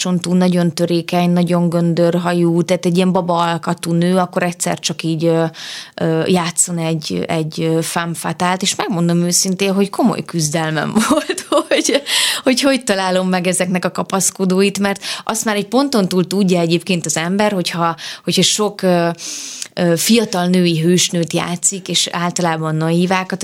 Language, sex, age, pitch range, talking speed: Hungarian, female, 20-39, 170-195 Hz, 135 wpm